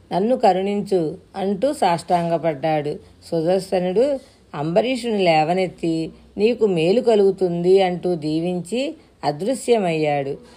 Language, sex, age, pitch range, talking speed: Telugu, female, 40-59, 165-200 Hz, 75 wpm